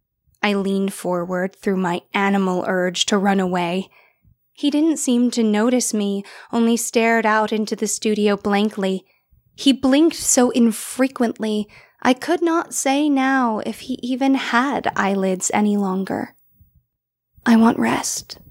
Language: English